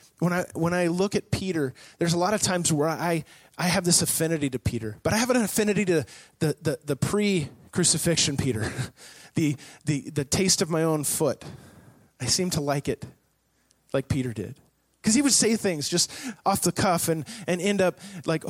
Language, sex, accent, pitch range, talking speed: English, male, American, 135-210 Hz, 200 wpm